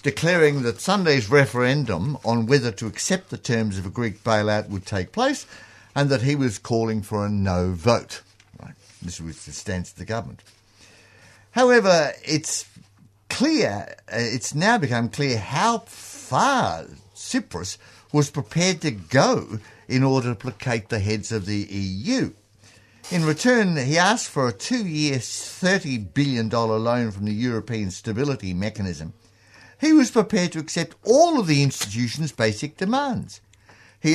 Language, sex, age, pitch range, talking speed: English, male, 60-79, 105-140 Hz, 150 wpm